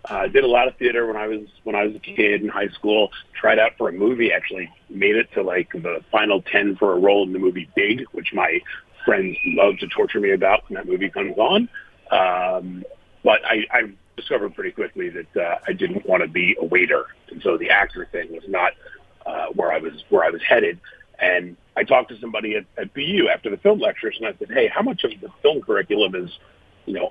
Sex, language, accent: male, English, American